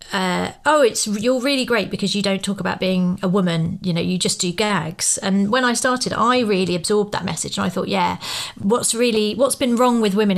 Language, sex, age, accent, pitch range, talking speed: English, female, 30-49, British, 195-250 Hz, 230 wpm